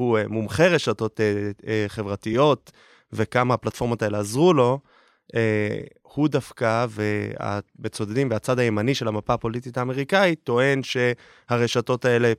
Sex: male